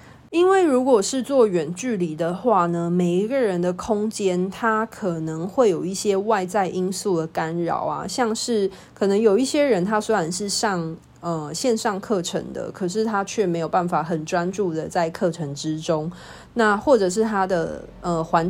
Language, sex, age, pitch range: Chinese, female, 20-39, 175-225 Hz